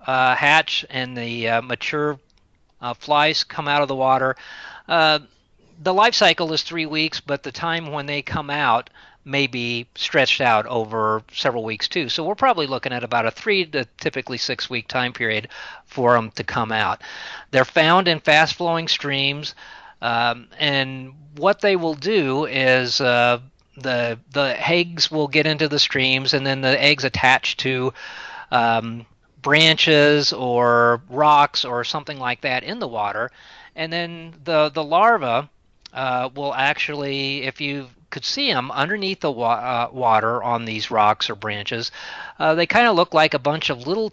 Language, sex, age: English, male, 40-59